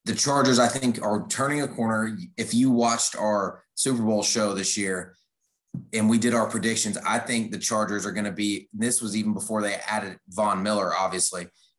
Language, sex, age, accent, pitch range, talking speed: English, male, 30-49, American, 105-120 Hz, 200 wpm